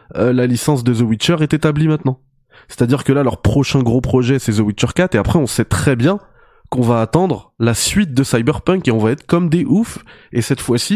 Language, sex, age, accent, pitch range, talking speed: French, male, 20-39, French, 120-155 Hz, 235 wpm